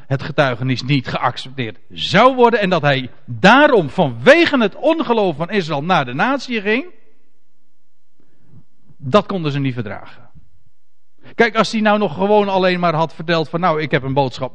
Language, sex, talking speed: Dutch, male, 165 wpm